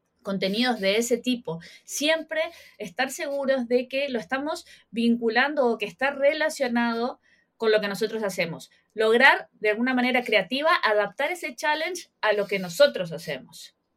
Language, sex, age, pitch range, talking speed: Spanish, female, 20-39, 205-280 Hz, 145 wpm